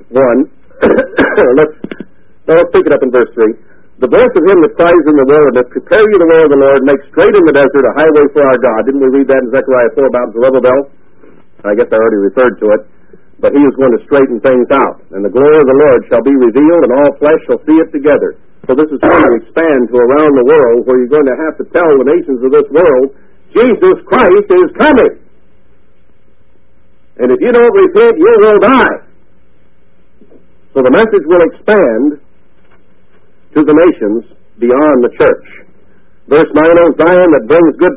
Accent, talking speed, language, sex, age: American, 210 wpm, English, male, 60-79